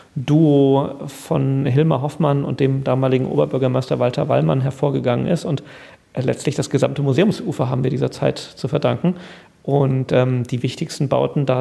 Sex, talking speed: male, 150 wpm